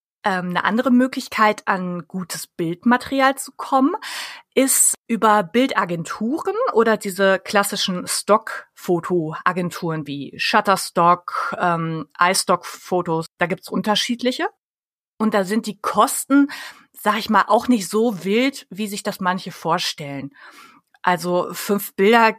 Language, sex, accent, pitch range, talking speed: German, female, German, 180-245 Hz, 115 wpm